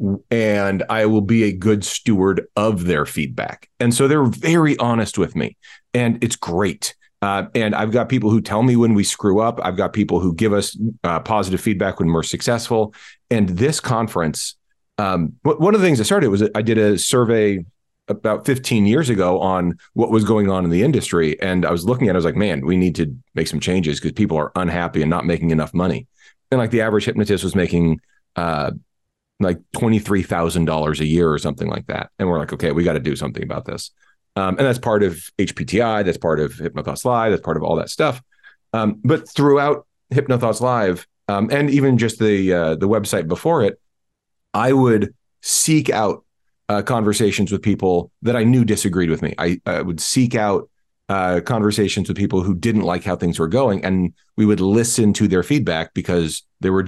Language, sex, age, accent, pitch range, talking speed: English, male, 40-59, American, 90-115 Hz, 205 wpm